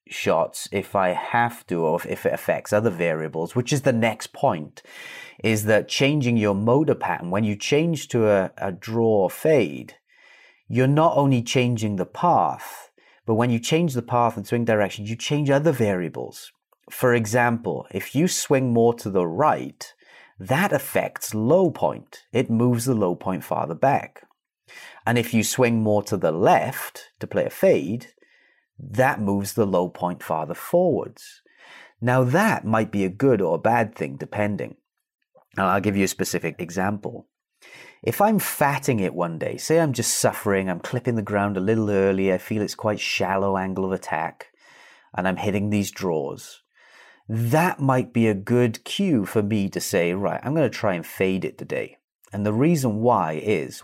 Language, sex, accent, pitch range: English, male, British, 95-125 Hz